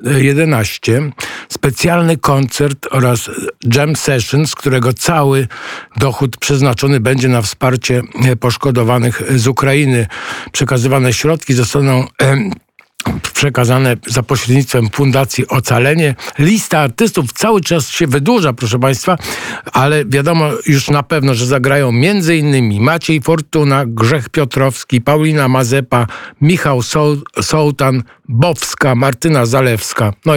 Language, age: Polish, 50-69